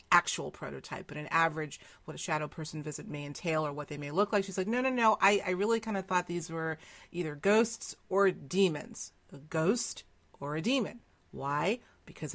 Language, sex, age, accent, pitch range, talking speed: English, female, 40-59, American, 150-190 Hz, 205 wpm